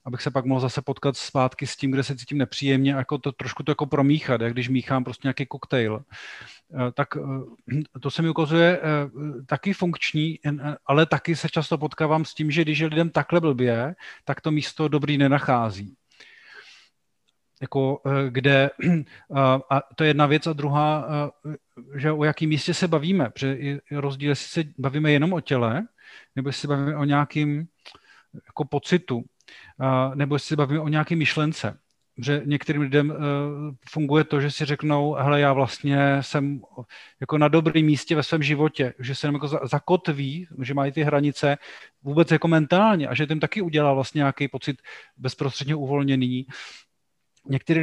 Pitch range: 140-155 Hz